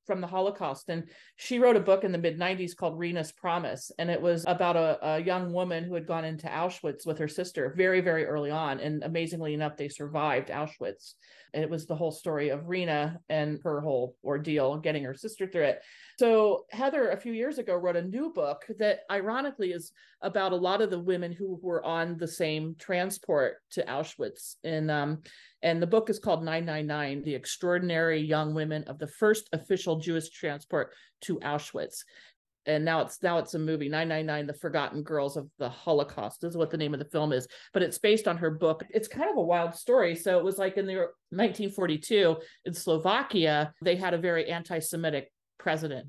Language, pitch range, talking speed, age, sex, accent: English, 155-185 Hz, 205 wpm, 40-59, male, American